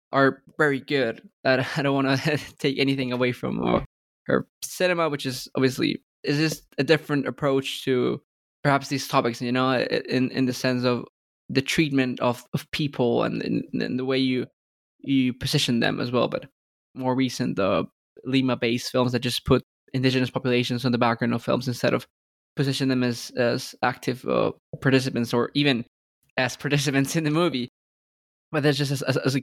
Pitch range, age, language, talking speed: 130-145 Hz, 20-39, English, 175 wpm